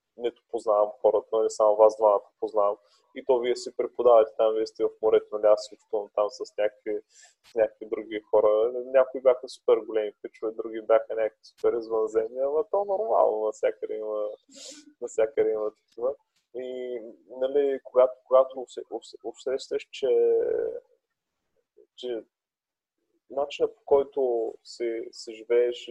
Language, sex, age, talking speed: Bulgarian, male, 20-39, 135 wpm